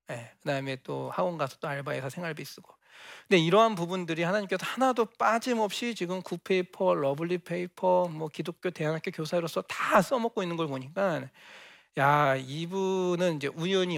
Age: 40-59